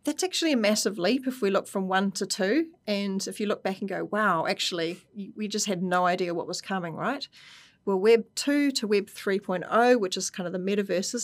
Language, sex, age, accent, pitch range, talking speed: English, female, 30-49, Australian, 180-215 Hz, 225 wpm